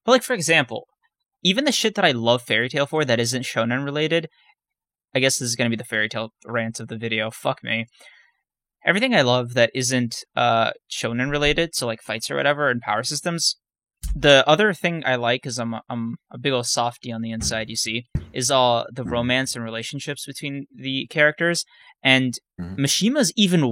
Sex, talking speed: male, 195 wpm